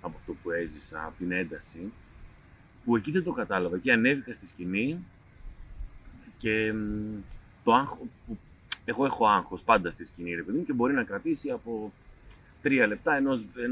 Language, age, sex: Greek, 30-49, male